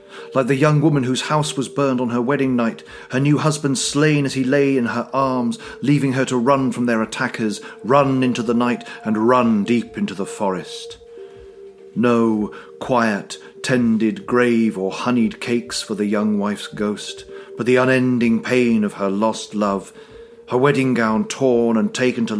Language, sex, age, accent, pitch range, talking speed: English, male, 40-59, British, 110-150 Hz, 175 wpm